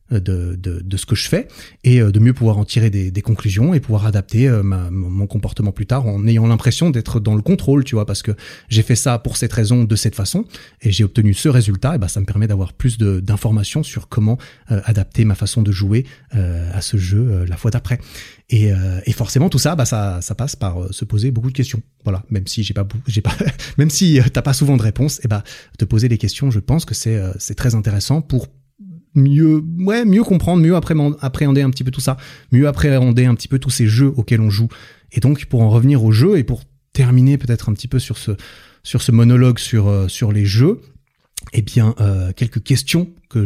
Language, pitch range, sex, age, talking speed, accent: French, 105-135 Hz, male, 30-49, 240 wpm, French